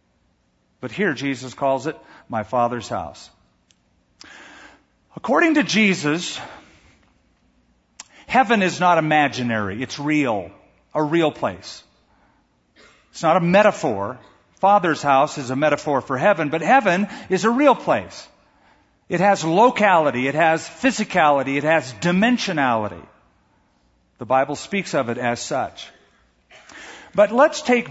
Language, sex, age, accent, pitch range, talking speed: English, male, 50-69, American, 120-185 Hz, 120 wpm